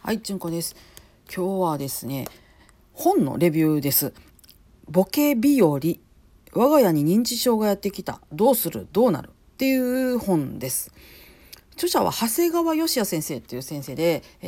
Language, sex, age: Japanese, female, 40-59